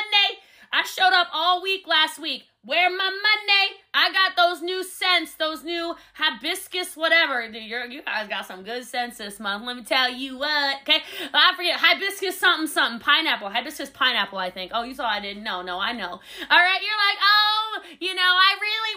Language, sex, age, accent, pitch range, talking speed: English, female, 20-39, American, 280-370 Hz, 195 wpm